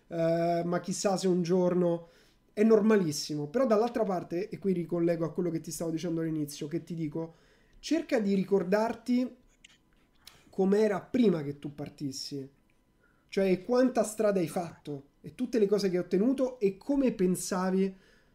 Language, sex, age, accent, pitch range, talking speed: Italian, male, 30-49, native, 175-220 Hz, 155 wpm